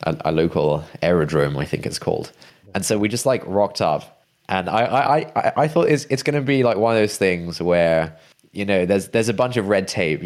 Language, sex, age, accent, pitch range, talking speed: English, male, 20-39, British, 90-125 Hz, 240 wpm